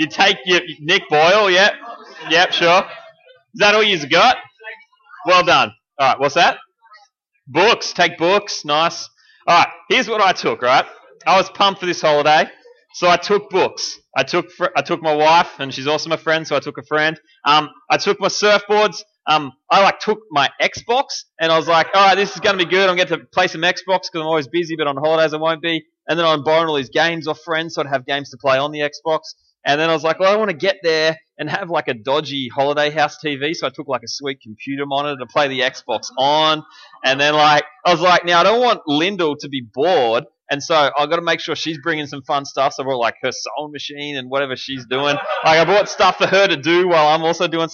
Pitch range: 150-190 Hz